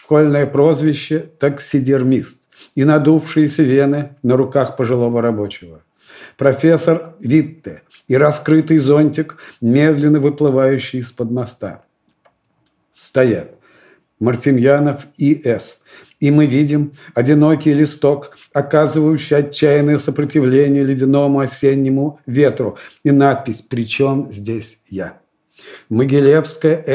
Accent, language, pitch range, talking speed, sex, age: native, Russian, 135-150 Hz, 90 wpm, male, 50-69